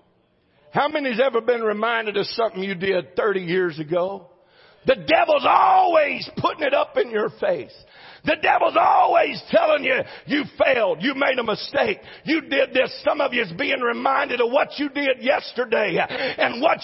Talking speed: 170 wpm